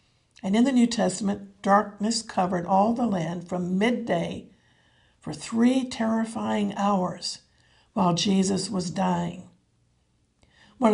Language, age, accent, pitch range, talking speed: English, 60-79, American, 180-235 Hz, 115 wpm